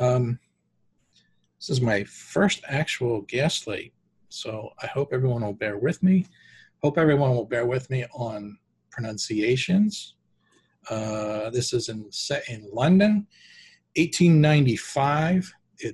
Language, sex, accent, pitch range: English, male, American, 115-155 Hz